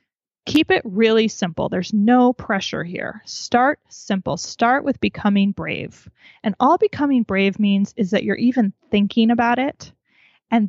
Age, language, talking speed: 20-39, English, 150 wpm